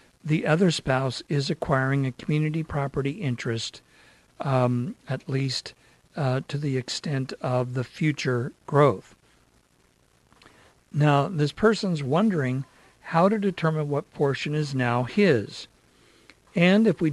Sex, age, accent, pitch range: male, 50-69, American, 130-160 Hz